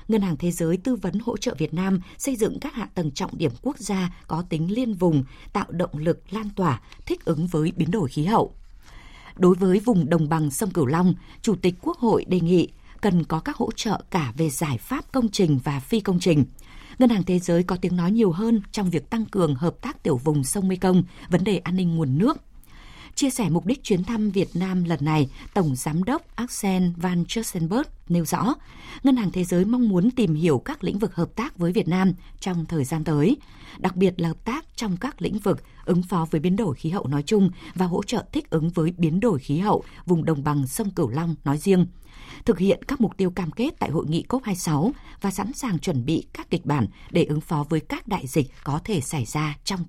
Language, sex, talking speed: Vietnamese, female, 235 wpm